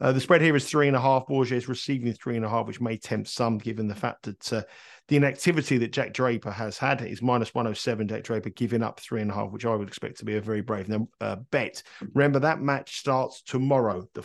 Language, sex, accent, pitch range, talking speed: English, male, British, 110-135 Hz, 255 wpm